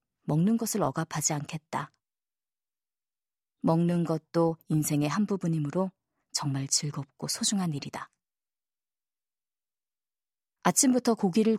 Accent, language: native, Korean